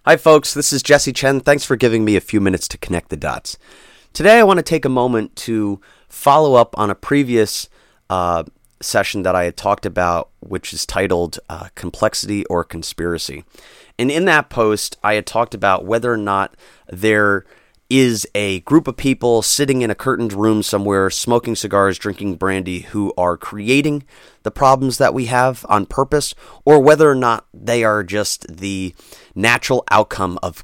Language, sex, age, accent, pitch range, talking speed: English, male, 30-49, American, 90-115 Hz, 180 wpm